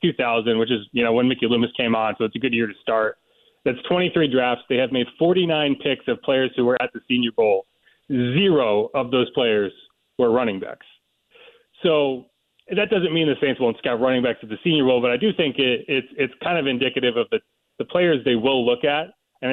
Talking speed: 225 wpm